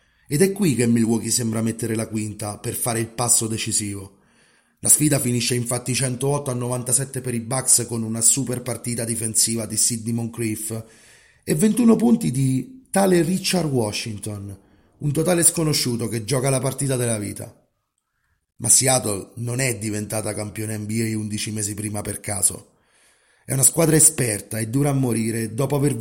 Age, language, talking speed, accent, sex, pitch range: 30-49, Italian, 160 wpm, native, male, 110-130 Hz